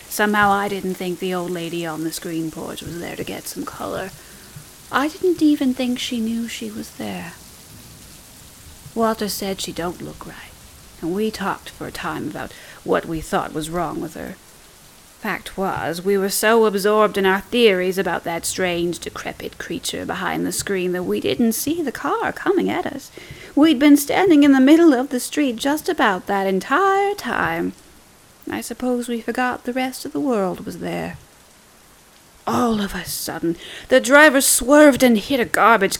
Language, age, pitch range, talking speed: English, 30-49, 180-255 Hz, 180 wpm